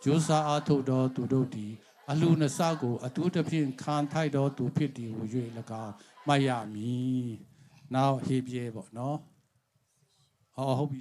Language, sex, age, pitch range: English, male, 60-79, 125-155 Hz